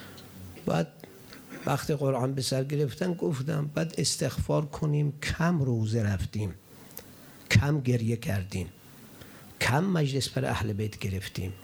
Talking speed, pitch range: 115 wpm, 115-160 Hz